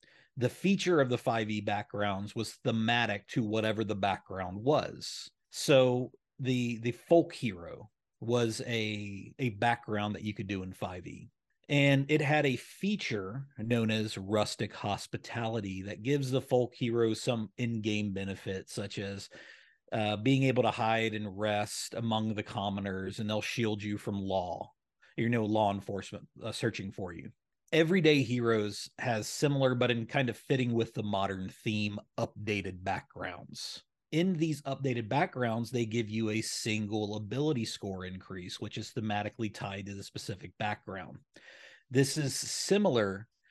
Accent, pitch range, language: American, 105-125 Hz, English